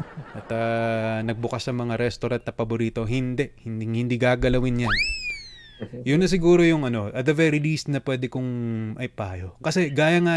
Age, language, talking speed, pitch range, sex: 20-39, Filipino, 175 wpm, 110-145 Hz, male